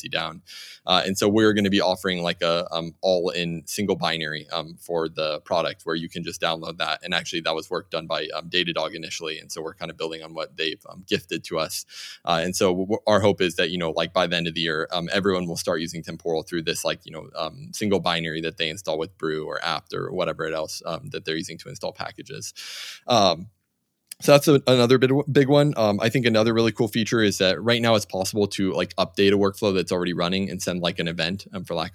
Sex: male